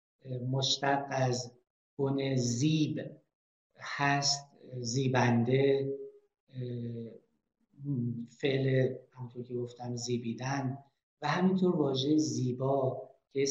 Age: 50-69